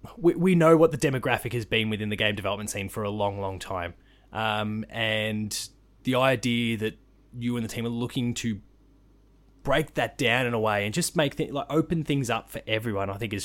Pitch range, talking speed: 110-130 Hz, 220 wpm